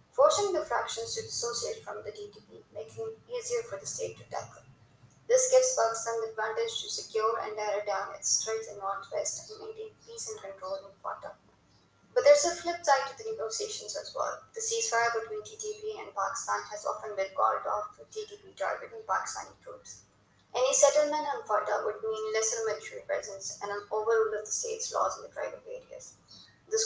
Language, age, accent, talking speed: English, 20-39, Indian, 190 wpm